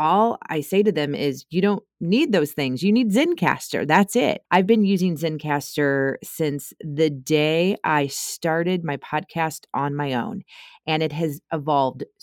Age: 30-49